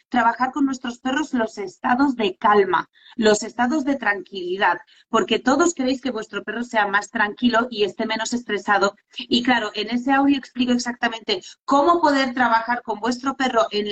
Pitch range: 205-260 Hz